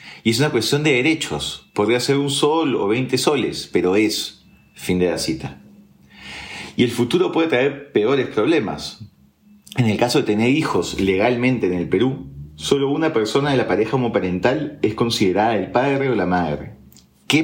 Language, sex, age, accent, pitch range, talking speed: Spanish, male, 40-59, Argentinian, 90-130 Hz, 175 wpm